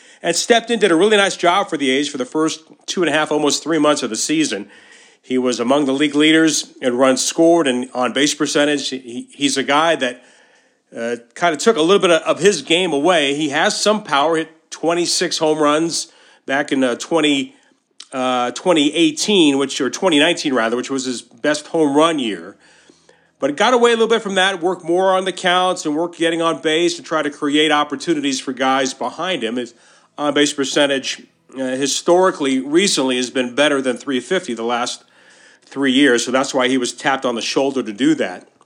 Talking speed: 205 wpm